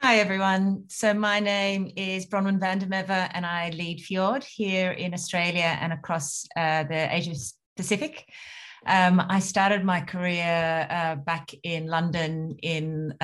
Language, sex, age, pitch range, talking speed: English, female, 30-49, 145-165 Hz, 145 wpm